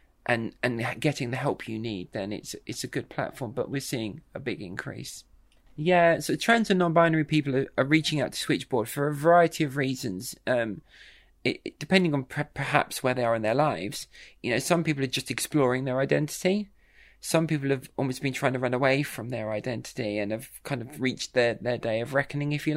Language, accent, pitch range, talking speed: English, British, 125-155 Hz, 215 wpm